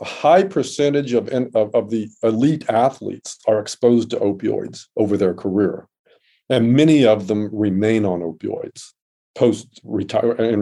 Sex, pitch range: male, 115-145 Hz